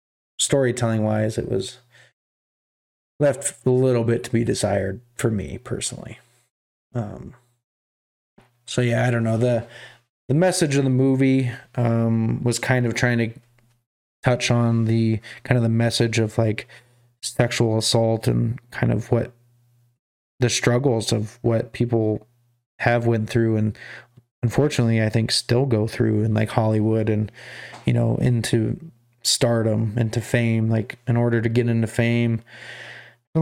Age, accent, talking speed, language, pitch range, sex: 20-39, American, 145 wpm, English, 115-125 Hz, male